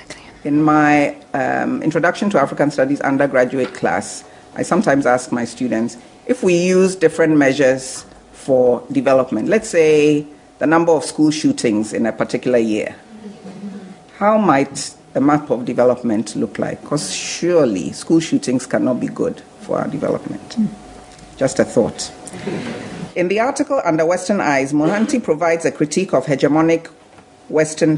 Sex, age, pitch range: female, 50-69, 135-185 Hz